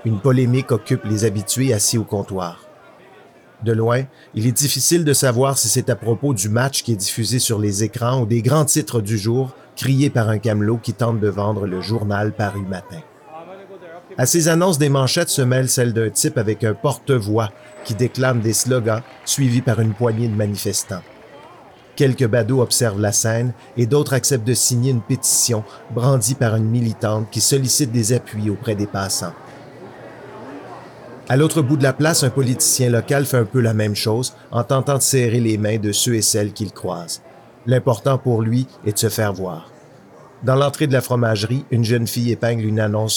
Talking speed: 190 wpm